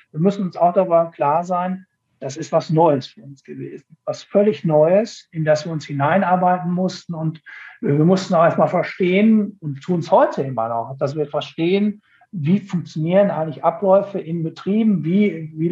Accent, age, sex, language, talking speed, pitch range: German, 60-79, male, German, 175 wpm, 150-180 Hz